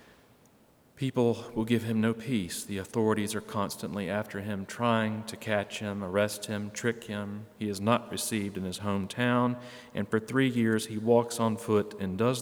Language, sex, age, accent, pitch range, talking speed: English, male, 40-59, American, 100-120 Hz, 180 wpm